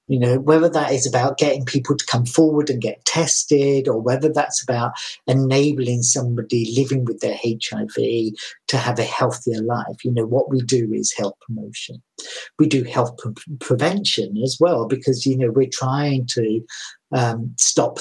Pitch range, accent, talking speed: 120-155 Hz, British, 175 wpm